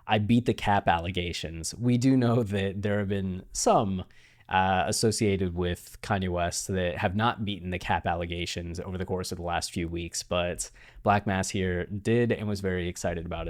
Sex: male